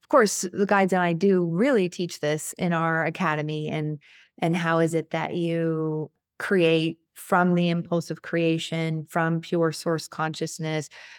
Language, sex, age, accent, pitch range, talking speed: English, female, 30-49, American, 165-195 Hz, 155 wpm